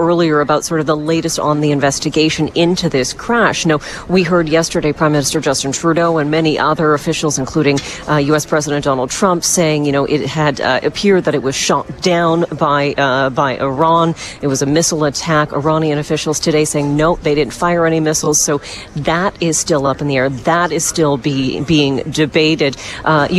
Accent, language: American, English